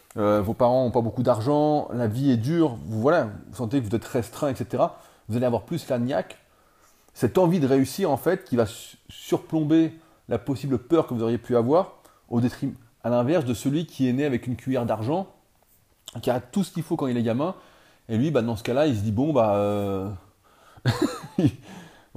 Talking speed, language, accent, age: 220 wpm, French, French, 30-49